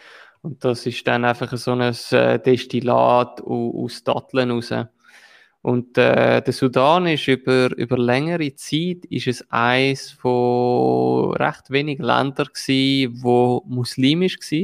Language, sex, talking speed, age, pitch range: German, male, 125 wpm, 20-39, 120-130 Hz